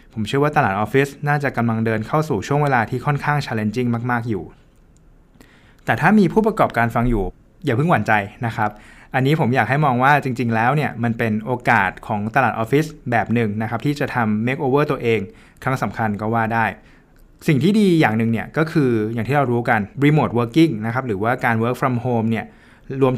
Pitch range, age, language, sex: 110-145 Hz, 20-39, Thai, male